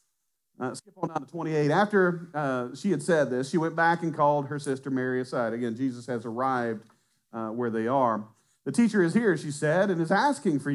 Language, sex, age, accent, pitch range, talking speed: English, male, 40-59, American, 120-165 Hz, 220 wpm